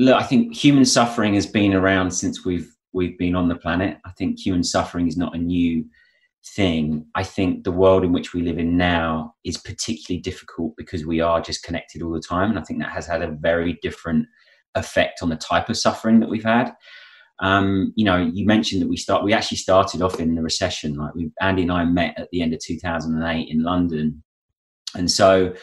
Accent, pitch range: British, 85-105 Hz